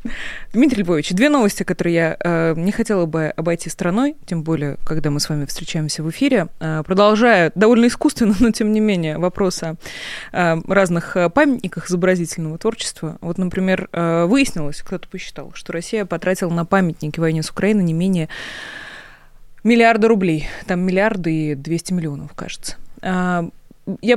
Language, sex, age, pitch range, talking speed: Russian, female, 20-39, 165-220 Hz, 150 wpm